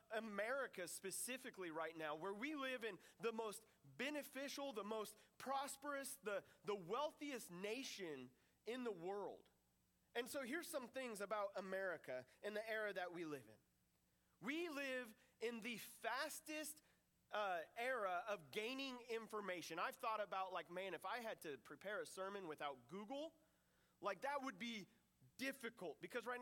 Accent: American